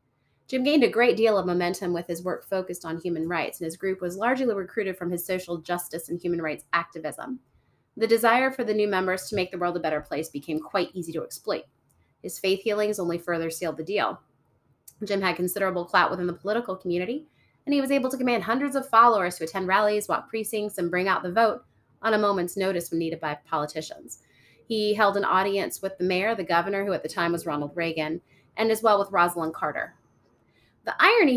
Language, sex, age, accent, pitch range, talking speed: English, female, 30-49, American, 170-210 Hz, 215 wpm